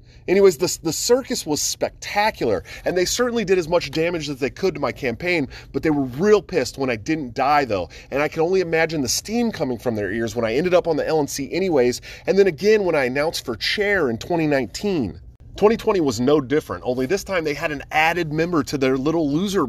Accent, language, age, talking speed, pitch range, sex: American, English, 30-49, 225 wpm, 135-195 Hz, male